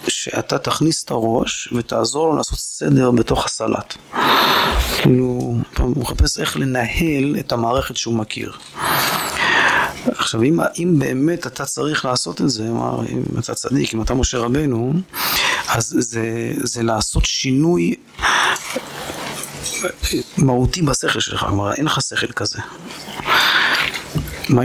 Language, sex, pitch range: Hebrew, male, 115-135 Hz